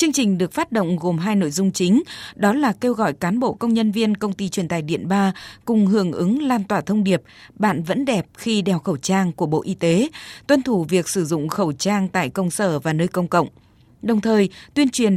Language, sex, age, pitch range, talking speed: Vietnamese, female, 20-39, 180-225 Hz, 240 wpm